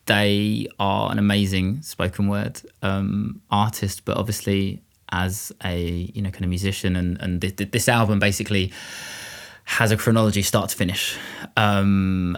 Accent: British